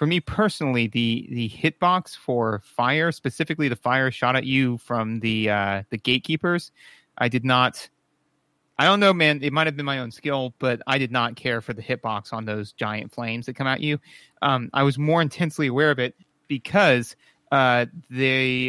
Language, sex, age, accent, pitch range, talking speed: English, male, 30-49, American, 125-150 Hz, 195 wpm